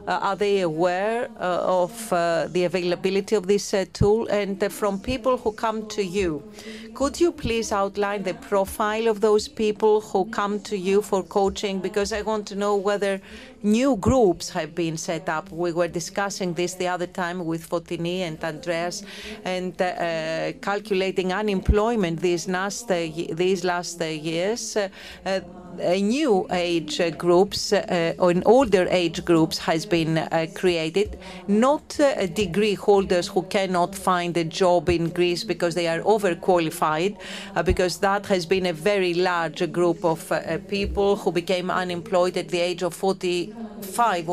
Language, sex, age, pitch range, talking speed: Greek, female, 40-59, 175-205 Hz, 160 wpm